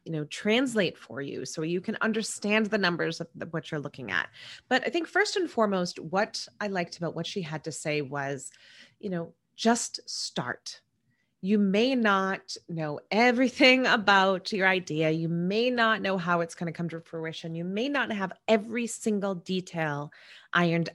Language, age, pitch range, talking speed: English, 30-49, 165-215 Hz, 180 wpm